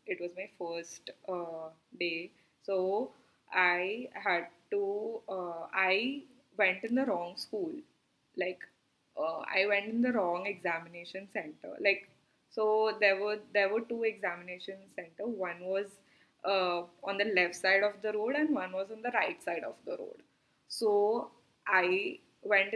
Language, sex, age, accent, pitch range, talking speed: English, female, 10-29, Indian, 180-210 Hz, 155 wpm